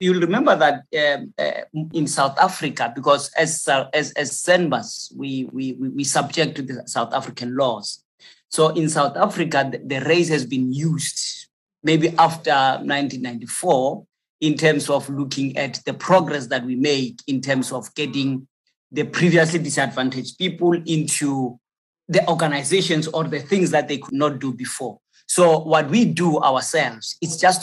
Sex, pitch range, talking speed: male, 135-165 Hz, 155 wpm